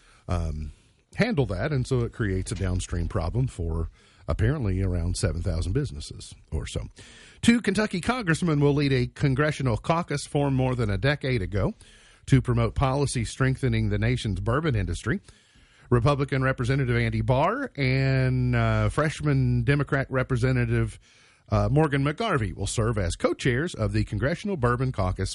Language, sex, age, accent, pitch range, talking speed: English, male, 50-69, American, 105-135 Hz, 140 wpm